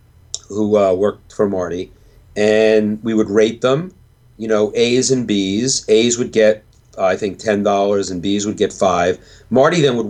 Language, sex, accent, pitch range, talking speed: English, male, American, 100-130 Hz, 185 wpm